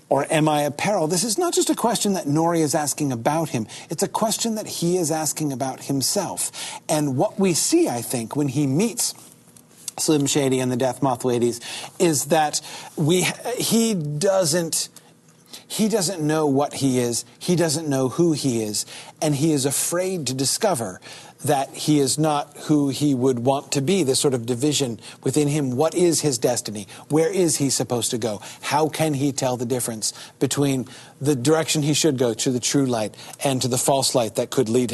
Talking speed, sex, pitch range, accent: 200 wpm, male, 125-160 Hz, American